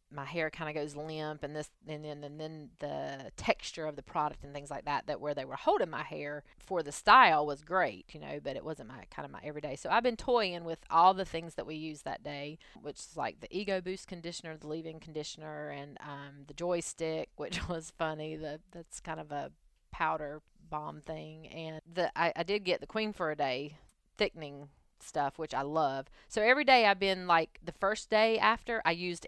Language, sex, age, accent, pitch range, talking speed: English, female, 30-49, American, 150-180 Hz, 225 wpm